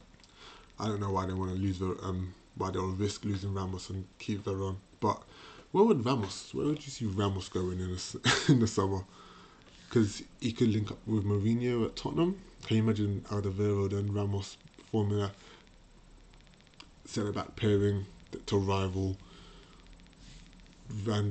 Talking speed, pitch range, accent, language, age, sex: 160 wpm, 95-110 Hz, British, English, 20-39, male